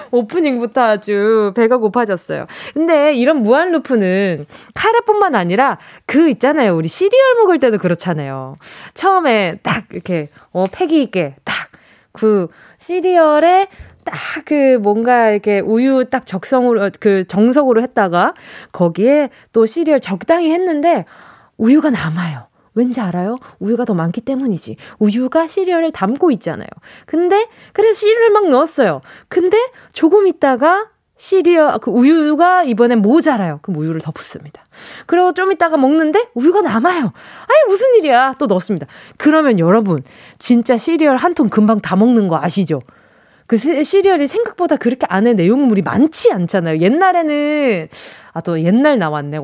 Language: Korean